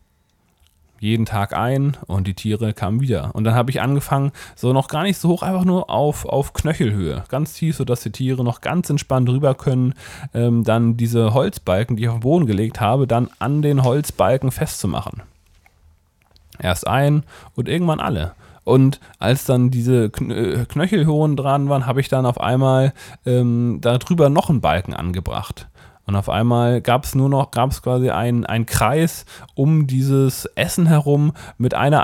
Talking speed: 170 wpm